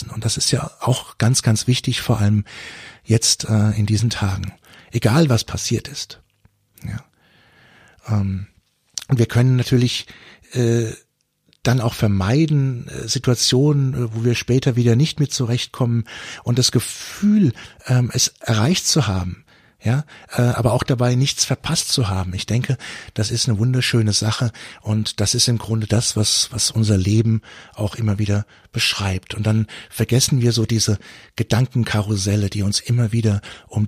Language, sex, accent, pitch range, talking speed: German, male, German, 100-120 Hz, 155 wpm